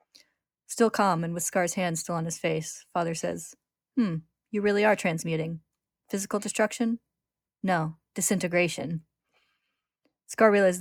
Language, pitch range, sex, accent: English, 170-195 Hz, female, American